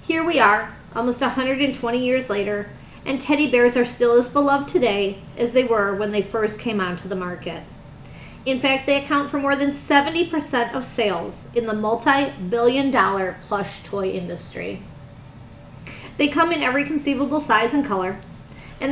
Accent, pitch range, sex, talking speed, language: American, 200-275 Hz, female, 160 wpm, English